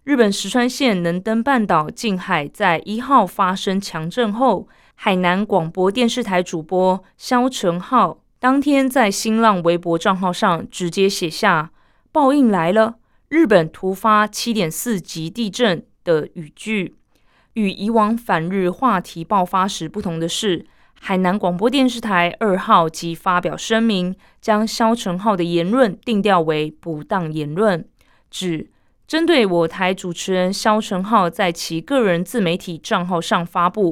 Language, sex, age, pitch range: Chinese, female, 20-39, 170-220 Hz